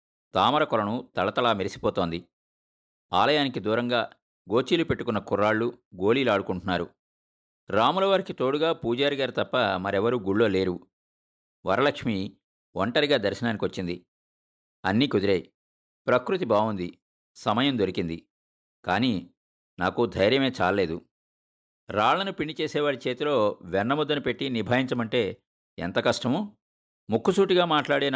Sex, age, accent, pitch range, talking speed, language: male, 50-69, native, 90-135 Hz, 85 wpm, Telugu